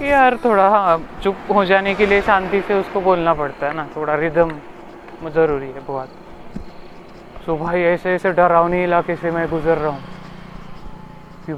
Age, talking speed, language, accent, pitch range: 20-39, 120 wpm, Marathi, native, 165-190 Hz